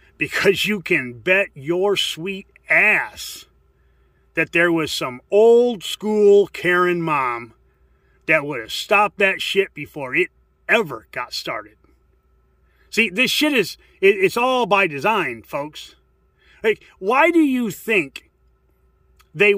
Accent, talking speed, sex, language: American, 125 wpm, male, English